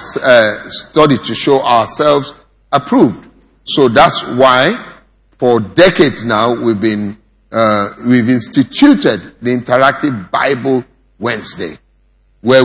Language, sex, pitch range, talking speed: English, male, 110-140 Hz, 105 wpm